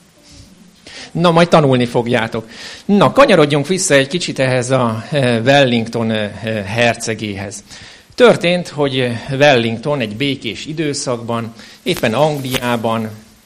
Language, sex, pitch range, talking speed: Hungarian, male, 110-140 Hz, 95 wpm